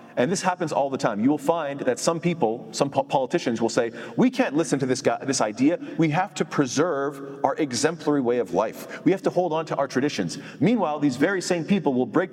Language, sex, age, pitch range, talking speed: English, male, 40-59, 125-165 Hz, 235 wpm